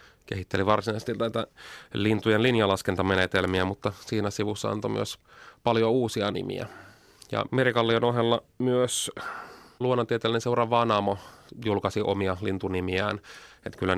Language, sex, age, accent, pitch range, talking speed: Finnish, male, 30-49, native, 100-120 Hz, 105 wpm